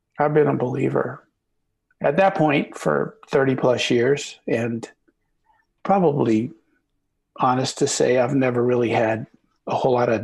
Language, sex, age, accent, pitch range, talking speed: English, male, 50-69, American, 120-150 Hz, 140 wpm